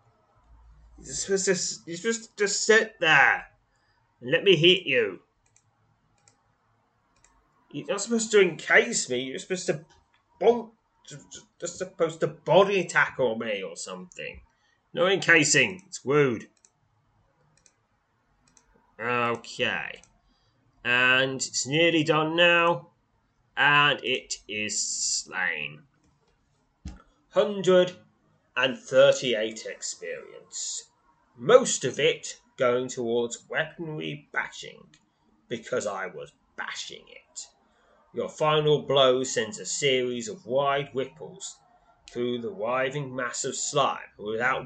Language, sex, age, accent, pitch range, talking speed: English, male, 30-49, British, 120-195 Hz, 95 wpm